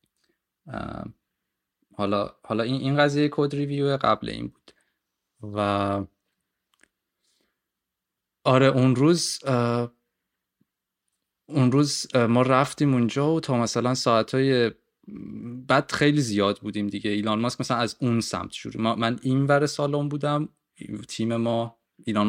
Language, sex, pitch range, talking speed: Persian, male, 105-125 Hz, 125 wpm